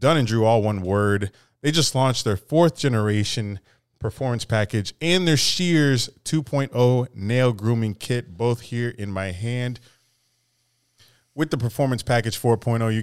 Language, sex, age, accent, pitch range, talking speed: English, male, 20-39, American, 105-125 Hz, 145 wpm